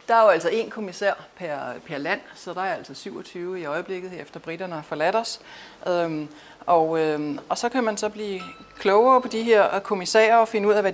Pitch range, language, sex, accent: 165-215 Hz, Danish, female, native